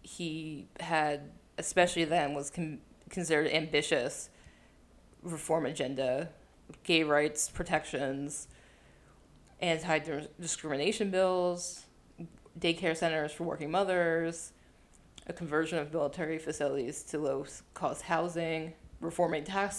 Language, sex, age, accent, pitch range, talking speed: English, female, 20-39, American, 145-170 Hz, 90 wpm